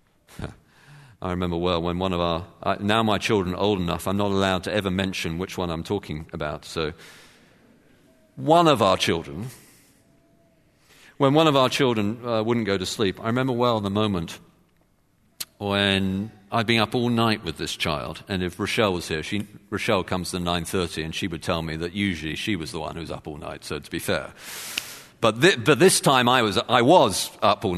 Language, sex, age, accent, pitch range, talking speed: English, male, 50-69, British, 95-130 Hz, 200 wpm